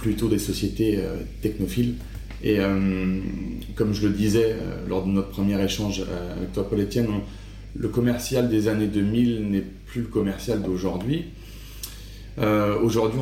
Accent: French